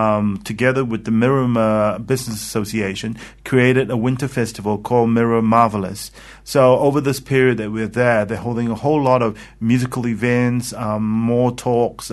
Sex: male